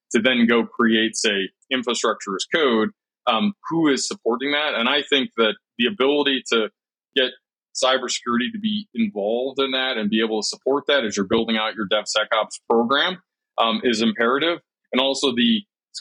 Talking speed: 175 wpm